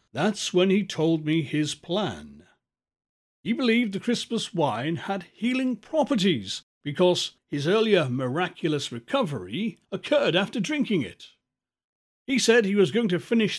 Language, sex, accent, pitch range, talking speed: English, male, British, 145-215 Hz, 135 wpm